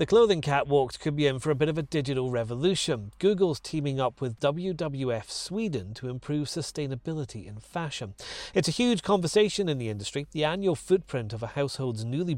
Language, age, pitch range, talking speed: English, 40-59, 115-160 Hz, 185 wpm